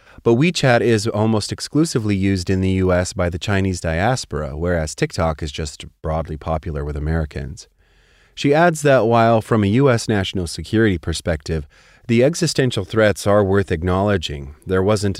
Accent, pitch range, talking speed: American, 85-110 Hz, 155 wpm